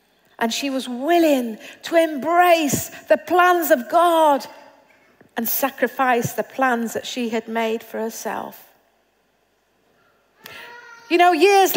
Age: 50-69